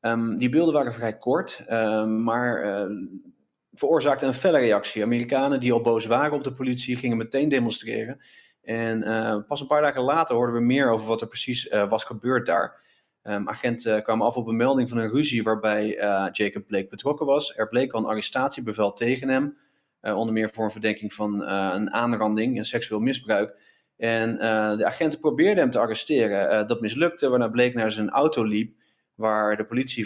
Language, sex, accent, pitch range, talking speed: Dutch, male, Dutch, 110-125 Hz, 200 wpm